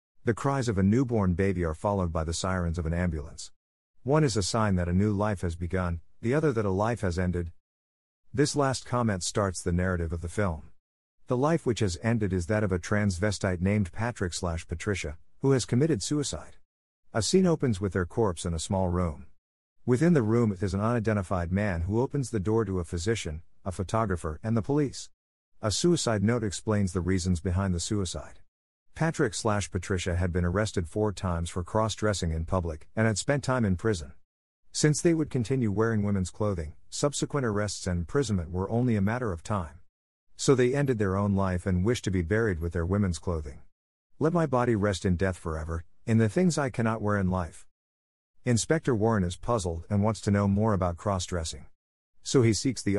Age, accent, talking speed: 50-69, American, 195 wpm